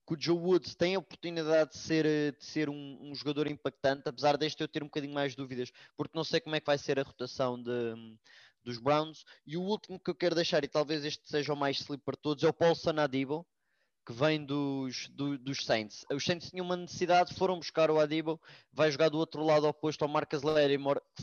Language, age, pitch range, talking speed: English, 20-39, 140-165 Hz, 220 wpm